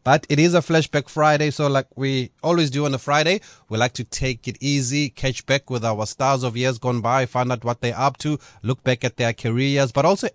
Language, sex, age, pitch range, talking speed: English, male, 30-49, 115-145 Hz, 245 wpm